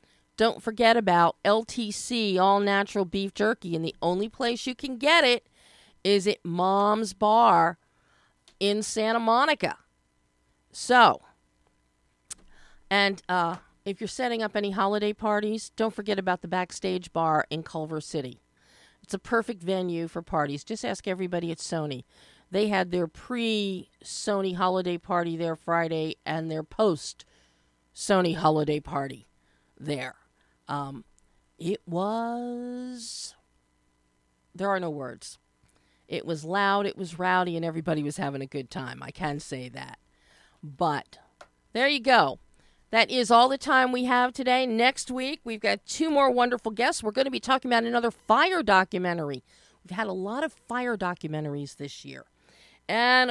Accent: American